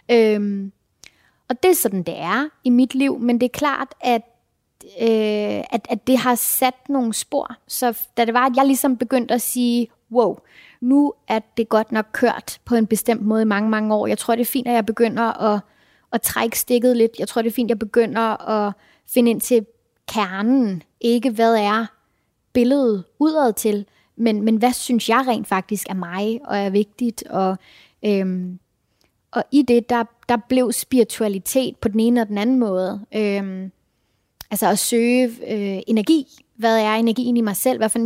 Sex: female